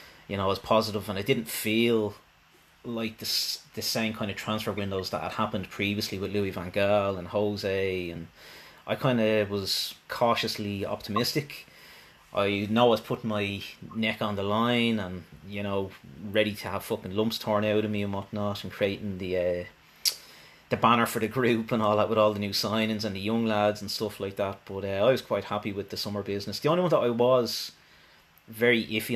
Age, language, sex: 30-49, English, male